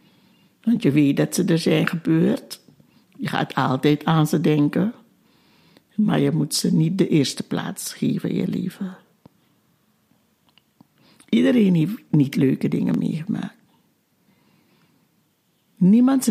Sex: female